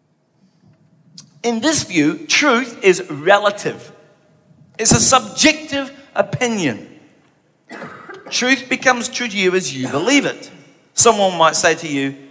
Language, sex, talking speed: English, male, 115 wpm